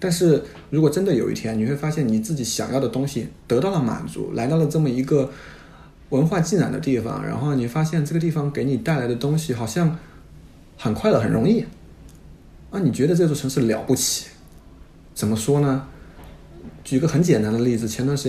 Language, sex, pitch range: Chinese, male, 115-160 Hz